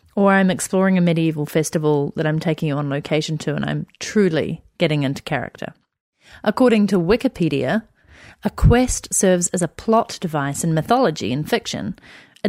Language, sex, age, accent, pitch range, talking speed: English, female, 30-49, Australian, 165-225 Hz, 165 wpm